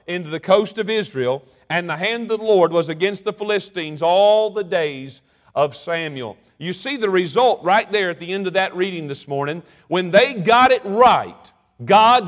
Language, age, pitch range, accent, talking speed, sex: English, 50-69, 175-225 Hz, American, 195 wpm, male